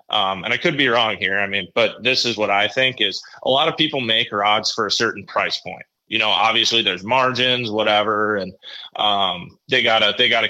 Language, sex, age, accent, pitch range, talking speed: English, male, 20-39, American, 105-125 Hz, 225 wpm